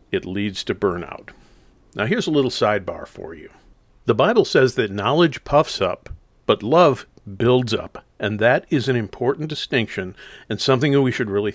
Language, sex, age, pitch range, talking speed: English, male, 50-69, 110-150 Hz, 175 wpm